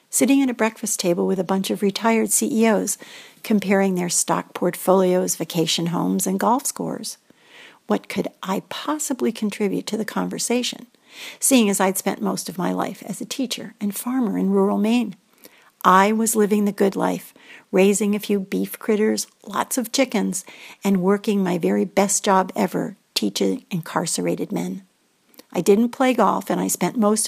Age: 60-79